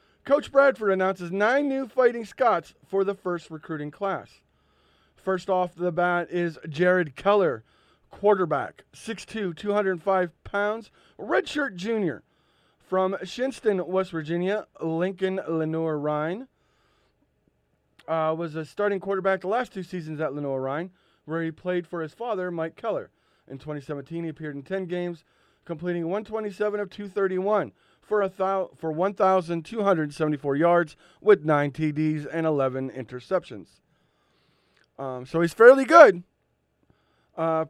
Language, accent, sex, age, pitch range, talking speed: English, American, male, 30-49, 155-195 Hz, 130 wpm